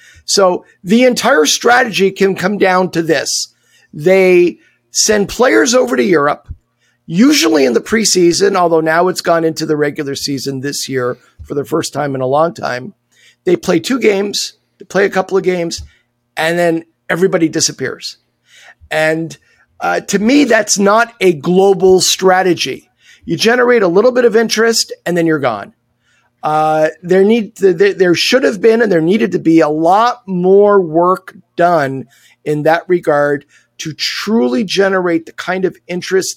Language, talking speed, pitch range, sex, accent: English, 160 wpm, 160-200 Hz, male, American